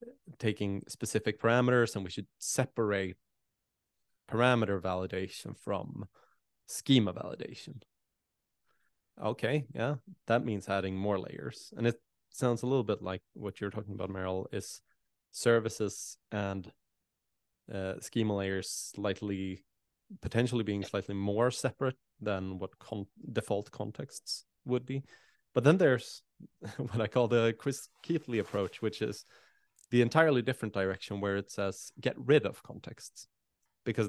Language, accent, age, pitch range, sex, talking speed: English, Norwegian, 20-39, 95-120 Hz, male, 130 wpm